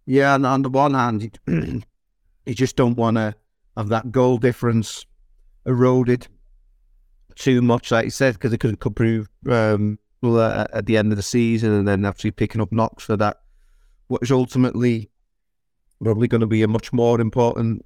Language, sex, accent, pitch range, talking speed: English, male, British, 110-130 Hz, 170 wpm